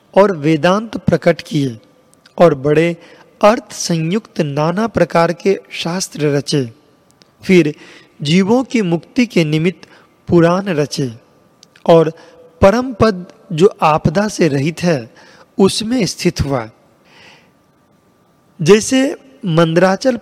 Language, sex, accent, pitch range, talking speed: Hindi, male, native, 160-205 Hz, 100 wpm